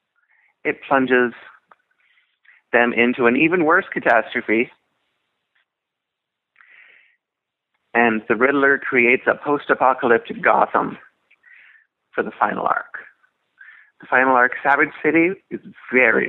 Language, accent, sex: English, American, male